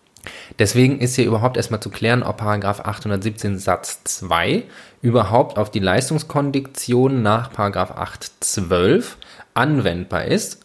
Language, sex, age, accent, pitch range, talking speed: German, male, 20-39, German, 100-125 Hz, 120 wpm